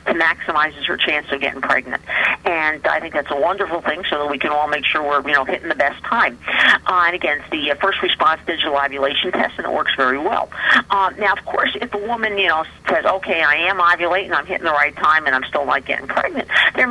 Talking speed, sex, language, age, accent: 250 wpm, female, English, 50-69, American